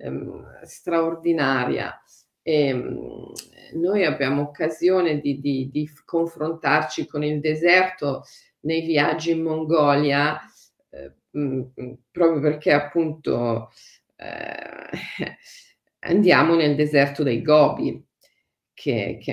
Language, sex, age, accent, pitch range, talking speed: Italian, female, 40-59, native, 145-175 Hz, 95 wpm